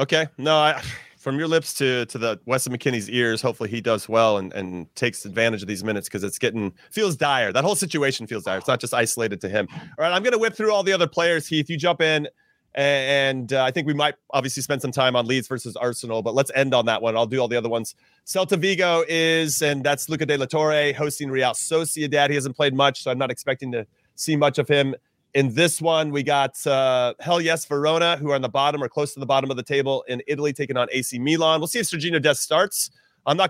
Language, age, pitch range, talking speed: English, 30-49, 125-160 Hz, 255 wpm